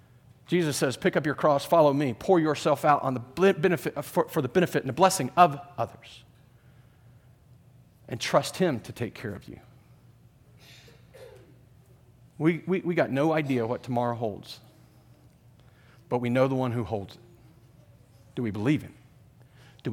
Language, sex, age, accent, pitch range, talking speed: English, male, 40-59, American, 125-175 Hz, 150 wpm